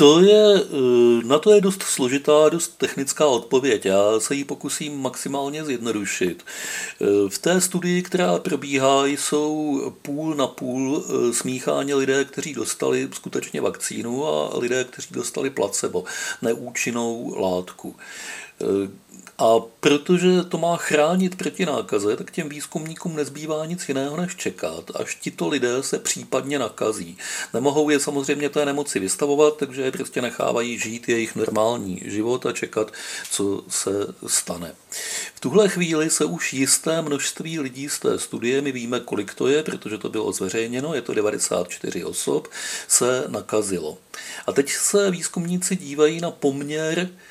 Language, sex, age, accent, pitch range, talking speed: Czech, male, 50-69, native, 125-160 Hz, 140 wpm